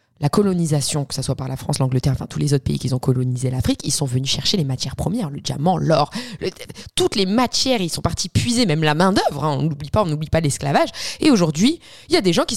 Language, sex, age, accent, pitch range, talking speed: French, female, 20-39, French, 150-220 Hz, 265 wpm